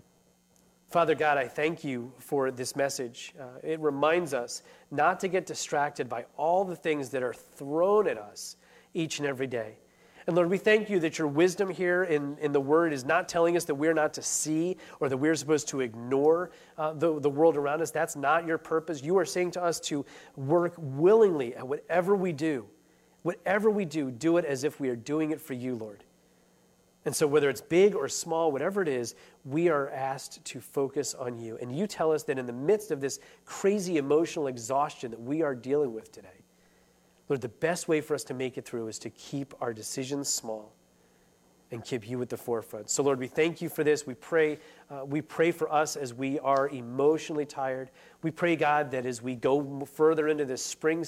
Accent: American